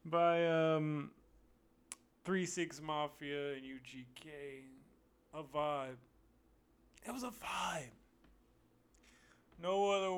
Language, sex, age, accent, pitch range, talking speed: English, male, 30-49, American, 130-170 Hz, 90 wpm